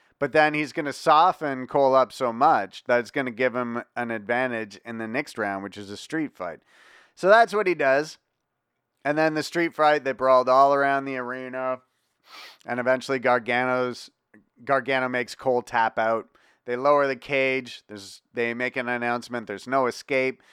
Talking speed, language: 185 wpm, English